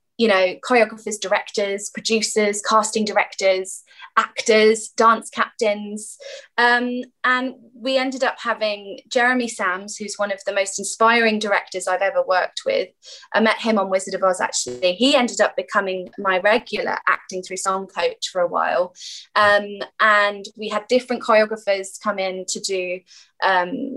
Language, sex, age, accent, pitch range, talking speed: English, female, 20-39, British, 190-230 Hz, 155 wpm